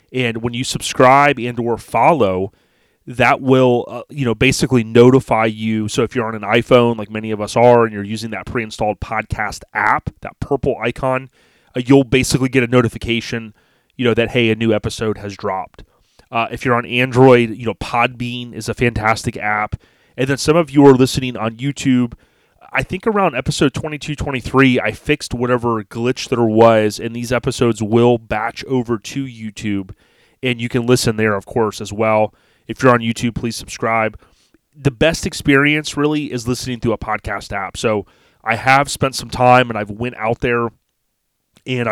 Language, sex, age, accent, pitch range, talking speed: English, male, 30-49, American, 110-130 Hz, 190 wpm